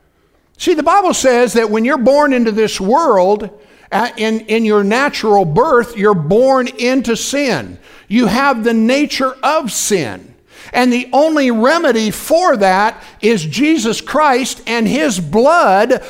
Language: English